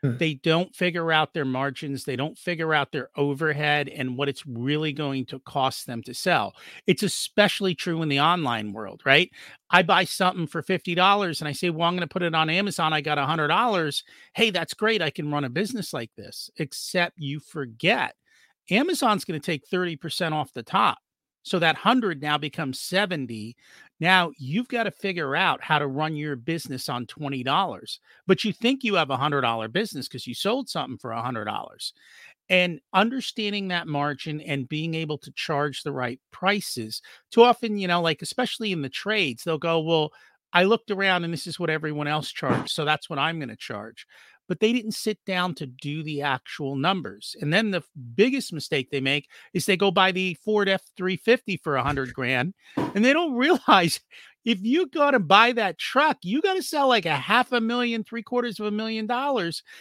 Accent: American